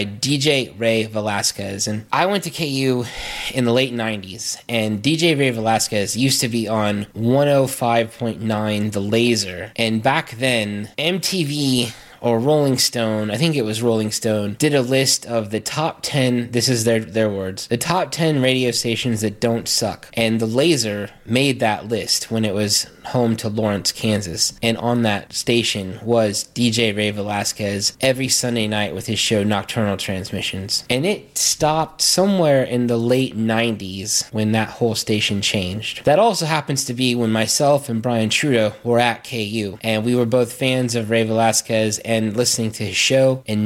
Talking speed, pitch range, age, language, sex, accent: 170 wpm, 110-130 Hz, 20-39, English, male, American